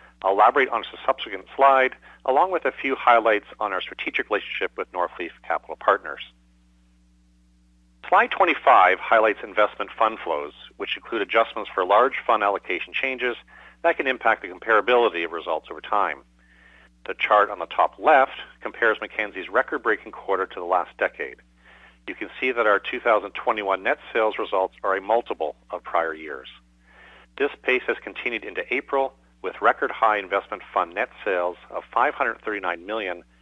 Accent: American